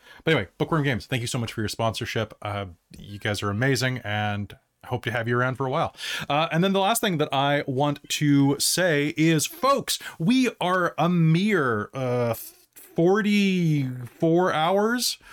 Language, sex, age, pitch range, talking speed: English, male, 30-49, 115-155 Hz, 180 wpm